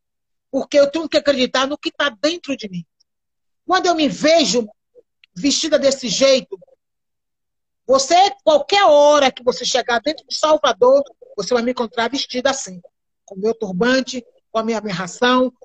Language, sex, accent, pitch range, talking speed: Portuguese, male, Brazilian, 245-295 Hz, 155 wpm